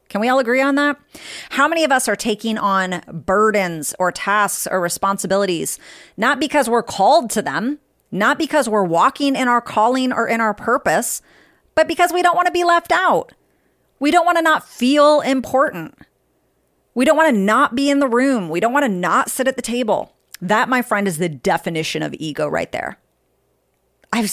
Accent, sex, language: American, female, English